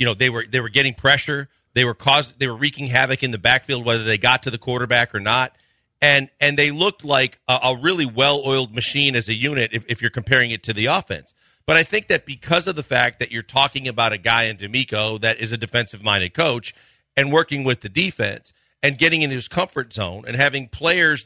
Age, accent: 40-59, American